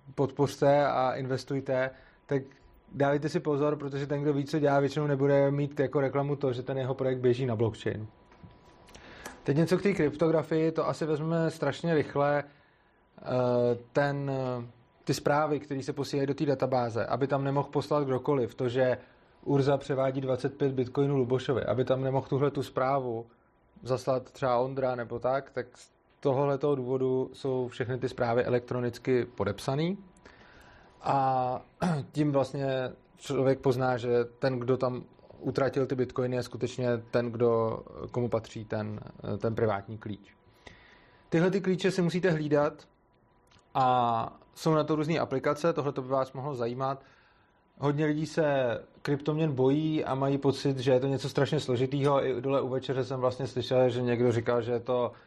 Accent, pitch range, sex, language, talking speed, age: native, 125-145 Hz, male, Czech, 155 wpm, 20-39